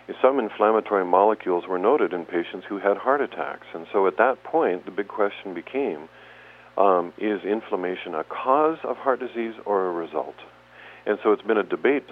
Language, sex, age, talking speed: English, male, 50-69, 185 wpm